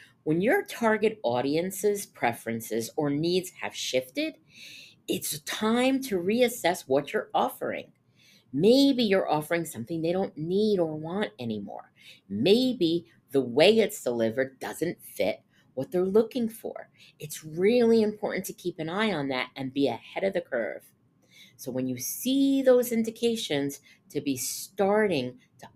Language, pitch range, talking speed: English, 145-215 Hz, 145 wpm